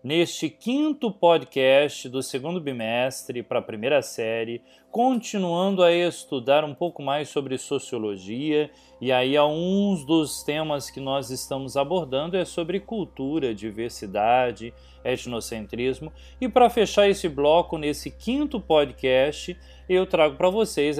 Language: Portuguese